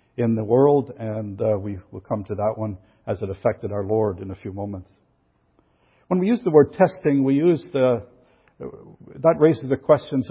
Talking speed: 190 wpm